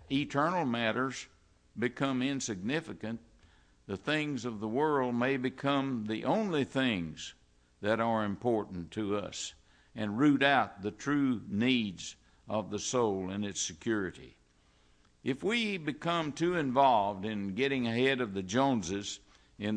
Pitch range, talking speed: 95-135 Hz, 130 wpm